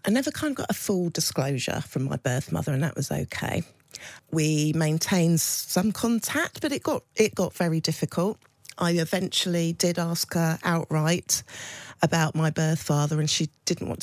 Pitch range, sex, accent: 135-165 Hz, female, British